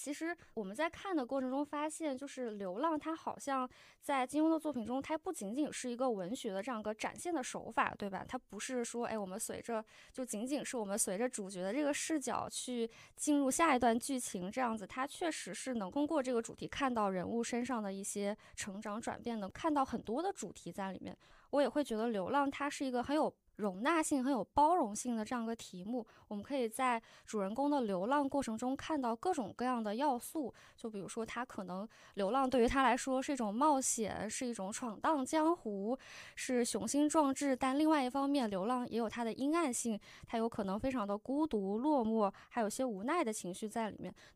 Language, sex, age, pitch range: Chinese, female, 20-39, 215-285 Hz